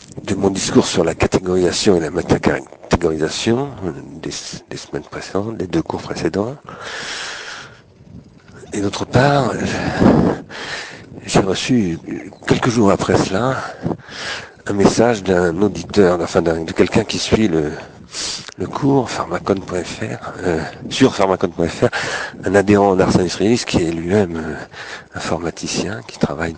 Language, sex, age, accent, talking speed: French, male, 50-69, French, 120 wpm